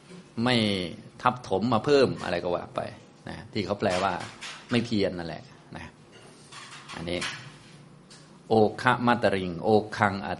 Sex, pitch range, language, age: male, 95-120 Hz, Thai, 30-49